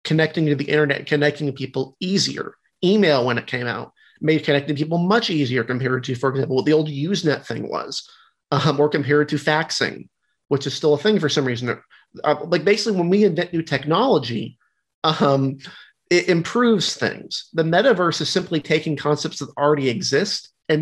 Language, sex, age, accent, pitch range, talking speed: English, male, 30-49, American, 135-170 Hz, 180 wpm